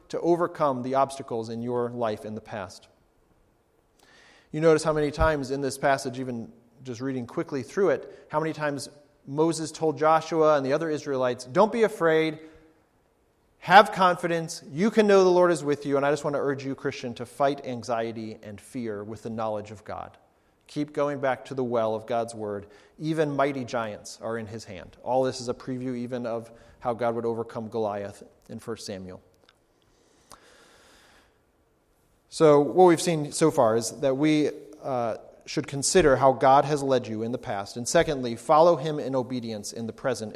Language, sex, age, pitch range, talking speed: English, male, 40-59, 115-150 Hz, 185 wpm